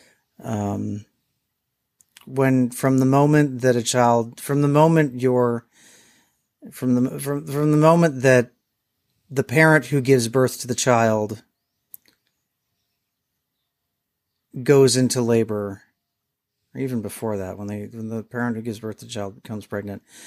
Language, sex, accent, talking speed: English, male, American, 140 wpm